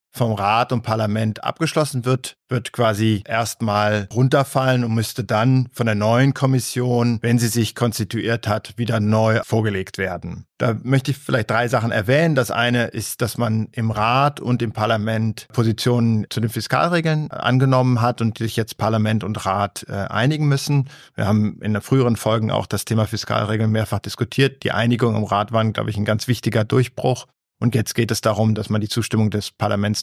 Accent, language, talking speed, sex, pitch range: German, German, 180 wpm, male, 105-125 Hz